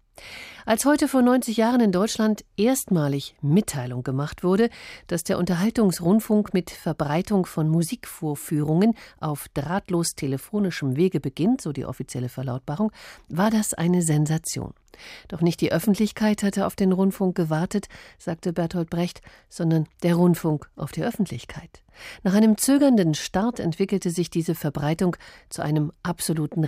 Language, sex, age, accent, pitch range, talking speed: German, female, 50-69, German, 150-200 Hz, 135 wpm